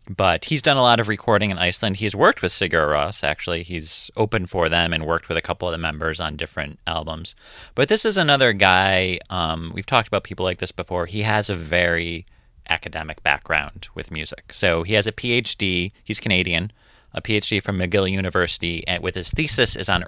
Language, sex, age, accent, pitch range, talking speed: English, male, 30-49, American, 85-105 Hz, 205 wpm